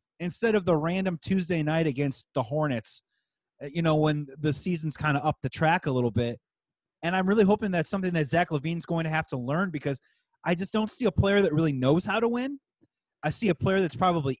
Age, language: 30-49, English